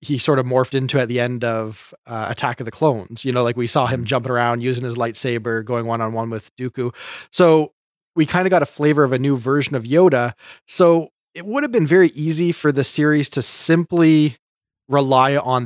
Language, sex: English, male